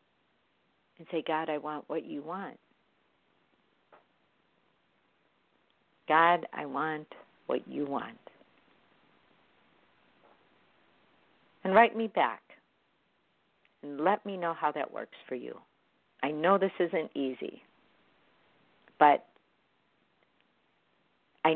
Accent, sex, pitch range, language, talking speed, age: American, female, 145-175 Hz, English, 95 wpm, 50-69